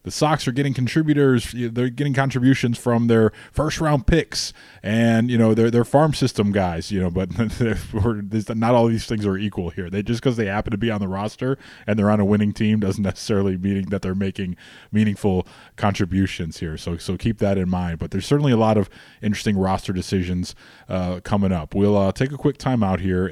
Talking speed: 210 wpm